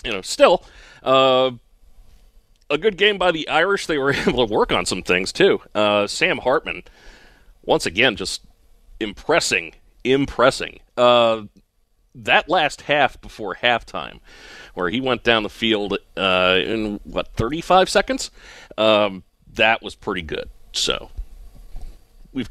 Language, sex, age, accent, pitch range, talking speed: English, male, 40-59, American, 105-150 Hz, 135 wpm